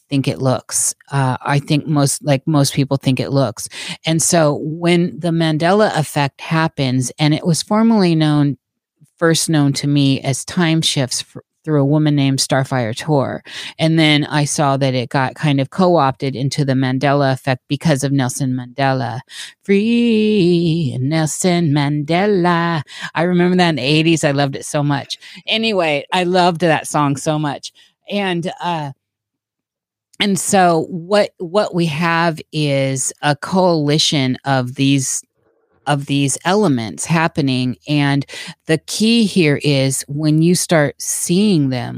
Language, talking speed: English, 150 wpm